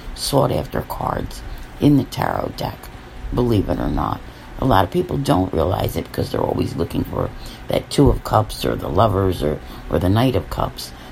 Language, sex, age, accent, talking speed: English, female, 50-69, American, 195 wpm